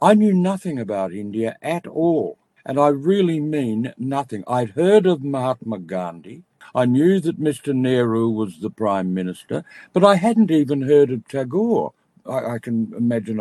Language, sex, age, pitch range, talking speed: Bengali, male, 60-79, 115-170 Hz, 165 wpm